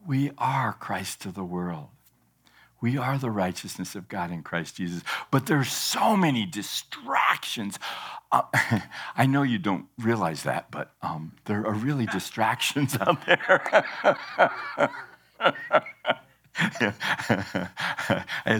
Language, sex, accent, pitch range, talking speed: English, male, American, 90-145 Hz, 115 wpm